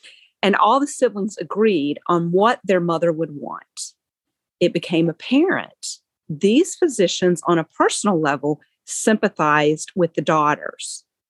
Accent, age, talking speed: American, 40-59, 125 wpm